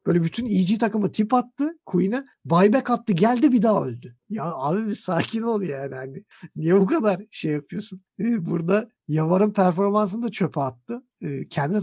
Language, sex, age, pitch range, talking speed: Turkish, male, 50-69, 145-195 Hz, 160 wpm